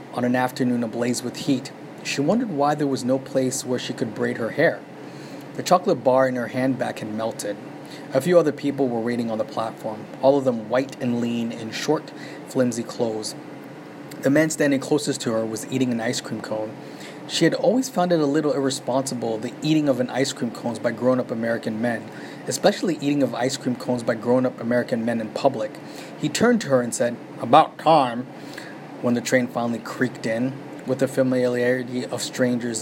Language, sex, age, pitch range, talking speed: English, male, 20-39, 120-140 Hz, 195 wpm